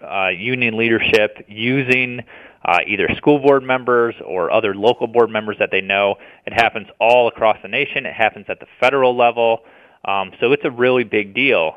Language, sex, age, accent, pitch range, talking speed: English, male, 30-49, American, 105-125 Hz, 185 wpm